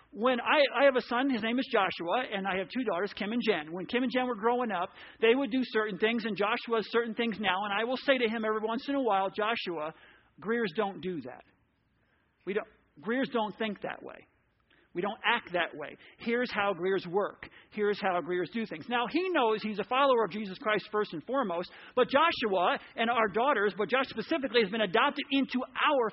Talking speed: 225 wpm